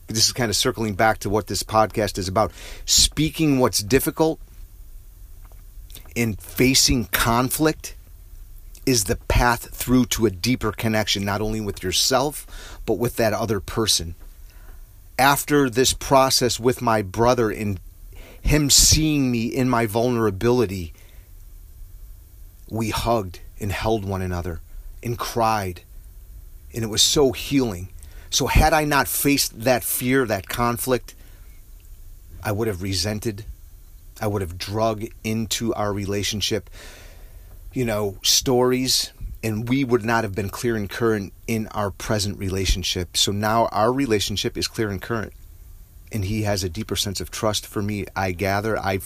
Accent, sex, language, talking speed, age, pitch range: American, male, English, 145 wpm, 40-59, 90-115 Hz